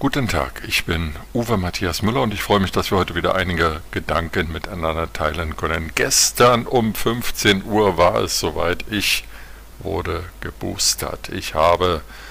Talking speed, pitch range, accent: 155 wpm, 85-100 Hz, German